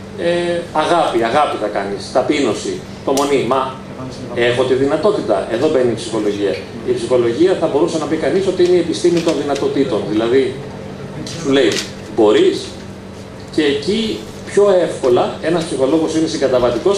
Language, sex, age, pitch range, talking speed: Greek, male, 40-59, 130-195 Hz, 140 wpm